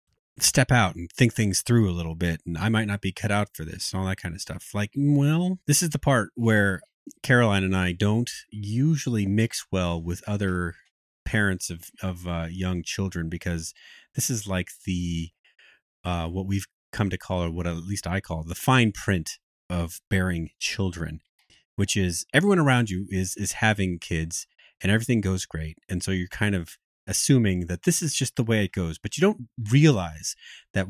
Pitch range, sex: 90-110 Hz, male